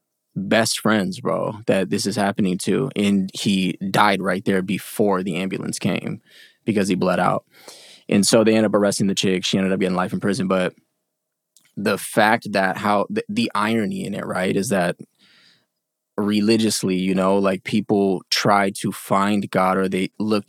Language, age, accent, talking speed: English, 20-39, American, 180 wpm